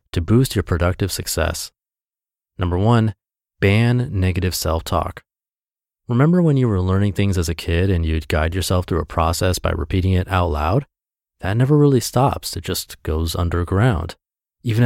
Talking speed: 160 wpm